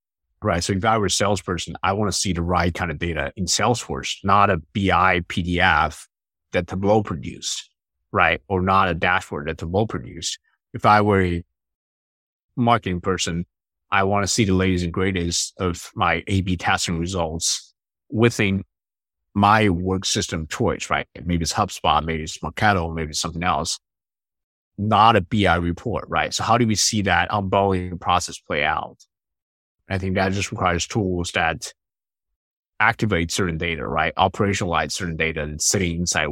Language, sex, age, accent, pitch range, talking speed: English, male, 30-49, American, 85-105 Hz, 165 wpm